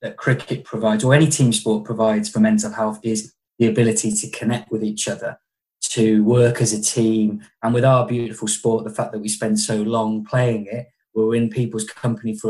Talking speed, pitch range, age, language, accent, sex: 210 wpm, 110-130 Hz, 20-39, English, British, male